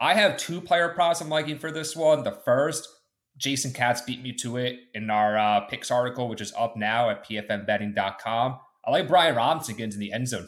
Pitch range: 105-140 Hz